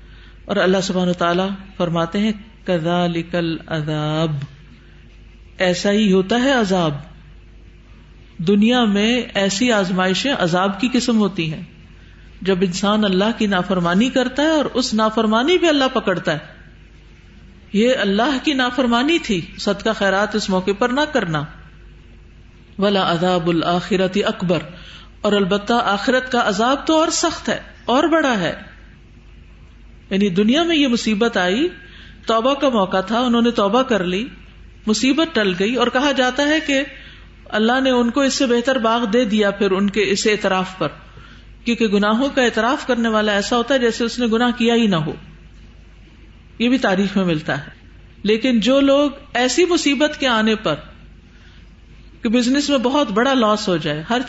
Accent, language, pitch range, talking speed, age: Indian, English, 185-250 Hz, 140 wpm, 50-69